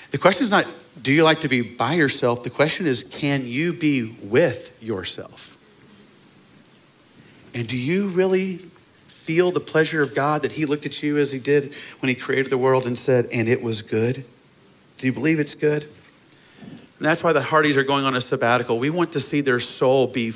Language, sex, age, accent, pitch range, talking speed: English, male, 40-59, American, 130-160 Hz, 205 wpm